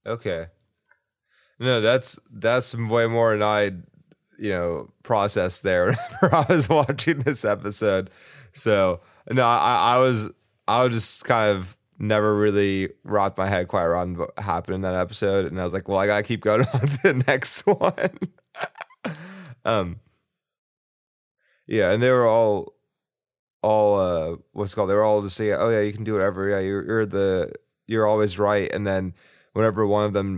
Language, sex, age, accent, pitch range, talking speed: English, male, 20-39, American, 100-115 Hz, 180 wpm